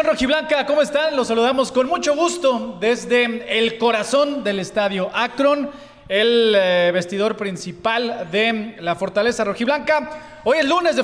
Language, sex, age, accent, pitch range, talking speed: Spanish, male, 30-49, Mexican, 195-255 Hz, 135 wpm